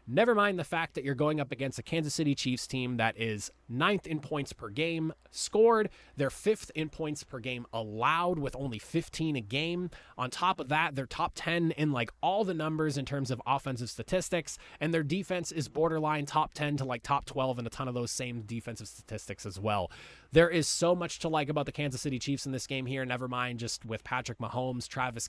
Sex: male